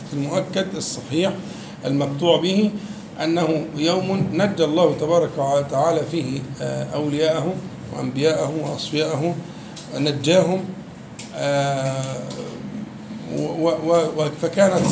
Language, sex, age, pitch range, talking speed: Arabic, male, 50-69, 145-175 Hz, 65 wpm